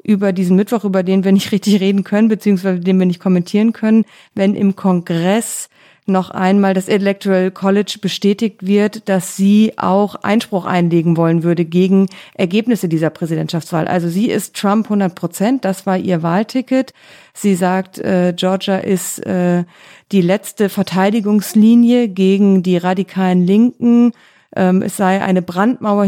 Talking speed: 145 wpm